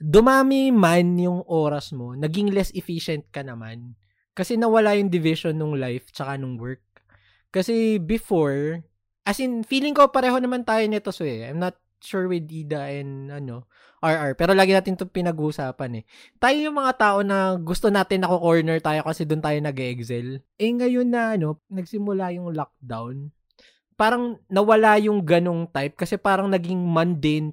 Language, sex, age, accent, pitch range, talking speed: English, male, 20-39, Filipino, 150-200 Hz, 160 wpm